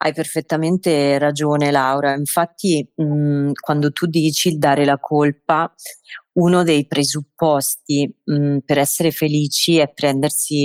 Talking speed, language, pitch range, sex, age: 115 wpm, Italian, 130-150 Hz, female, 30-49